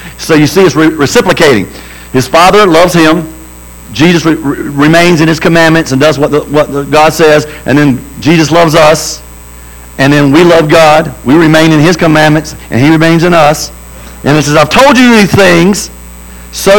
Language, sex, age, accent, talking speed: English, male, 50-69, American, 195 wpm